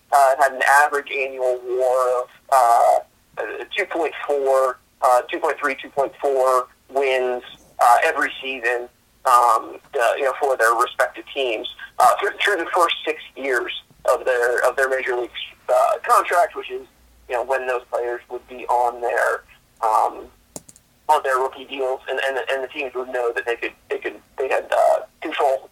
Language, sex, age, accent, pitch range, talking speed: English, male, 30-49, American, 125-150 Hz, 165 wpm